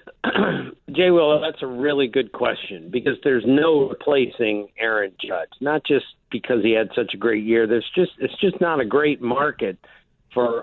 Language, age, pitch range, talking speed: English, 50-69, 120-160 Hz, 175 wpm